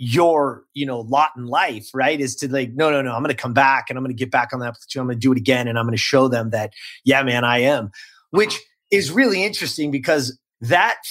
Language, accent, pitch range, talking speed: English, American, 125-150 Hz, 265 wpm